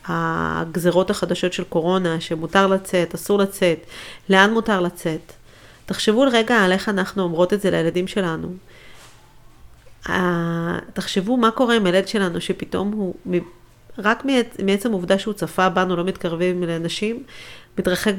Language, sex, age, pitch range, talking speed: Hebrew, female, 40-59, 165-200 Hz, 130 wpm